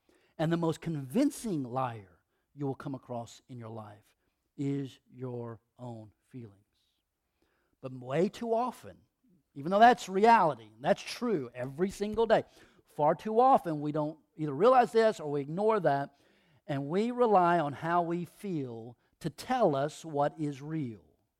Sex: male